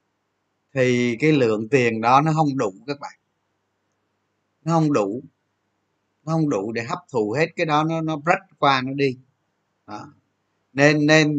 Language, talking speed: Vietnamese, 165 wpm